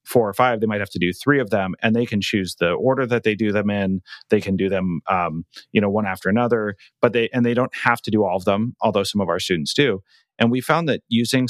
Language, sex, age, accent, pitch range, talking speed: English, male, 30-49, American, 95-115 Hz, 280 wpm